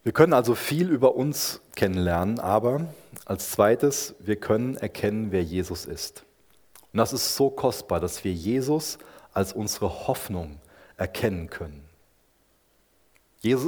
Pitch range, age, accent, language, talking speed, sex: 95-130 Hz, 30-49, German, German, 130 wpm, male